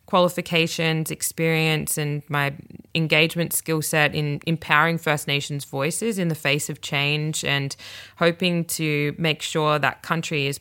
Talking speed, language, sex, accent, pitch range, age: 140 wpm, English, female, Australian, 145-165 Hz, 20-39